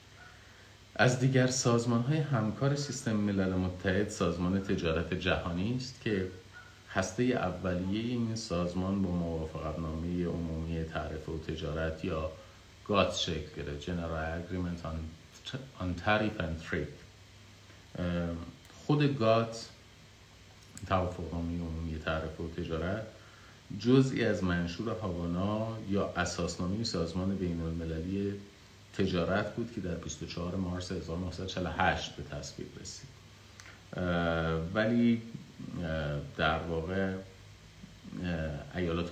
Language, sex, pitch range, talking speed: Persian, male, 80-100 Hz, 100 wpm